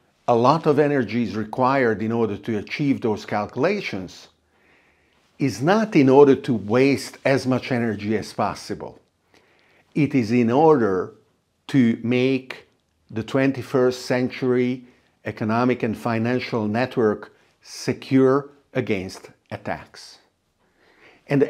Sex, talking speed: male, 110 wpm